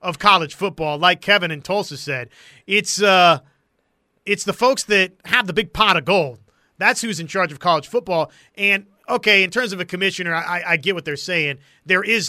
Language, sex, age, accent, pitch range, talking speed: English, male, 30-49, American, 165-220 Hz, 205 wpm